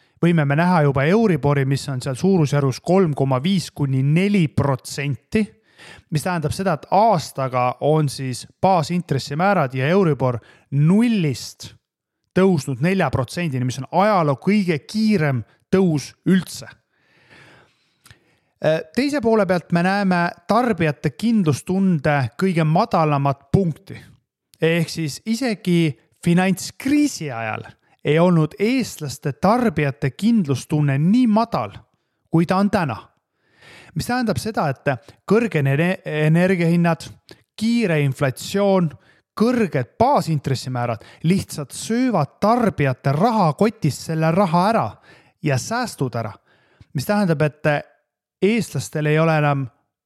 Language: English